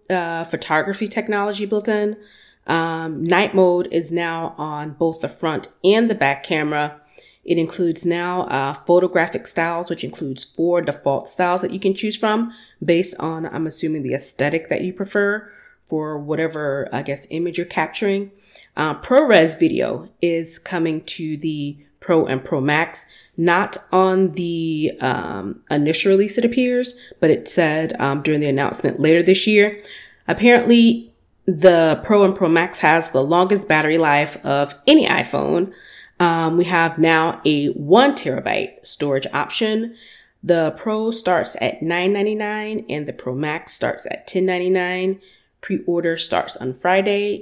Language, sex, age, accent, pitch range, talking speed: English, female, 30-49, American, 155-195 Hz, 150 wpm